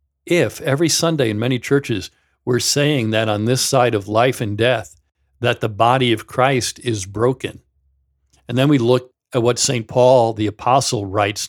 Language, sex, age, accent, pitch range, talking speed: English, male, 50-69, American, 105-125 Hz, 180 wpm